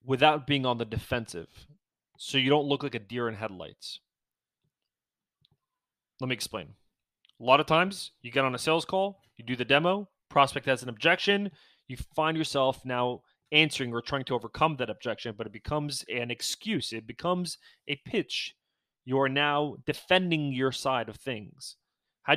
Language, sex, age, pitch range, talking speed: English, male, 30-49, 120-155 Hz, 170 wpm